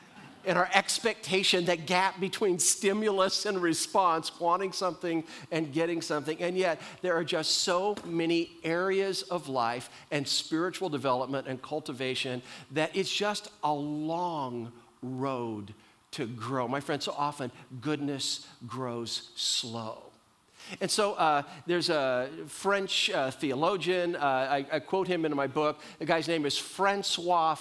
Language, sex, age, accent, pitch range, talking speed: English, male, 50-69, American, 145-190 Hz, 140 wpm